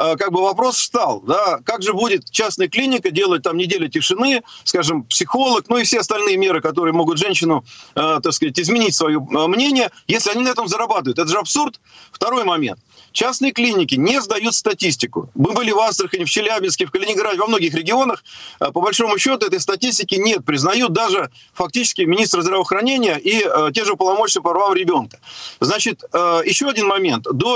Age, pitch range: 40-59, 195-275 Hz